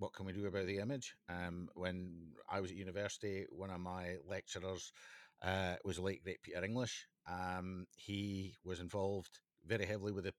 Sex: male